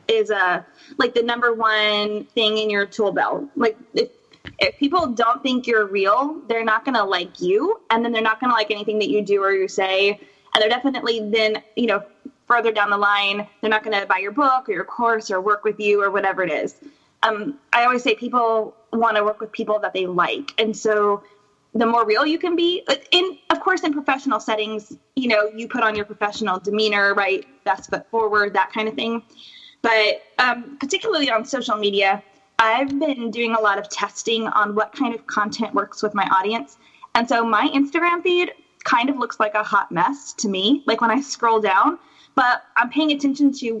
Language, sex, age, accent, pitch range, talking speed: English, female, 20-39, American, 210-275 Hz, 215 wpm